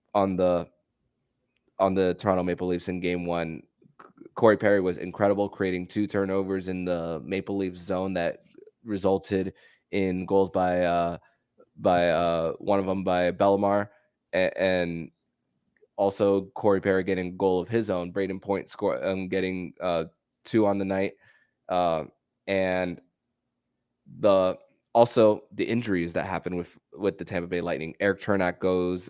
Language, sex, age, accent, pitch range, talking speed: English, male, 20-39, American, 85-95 Hz, 145 wpm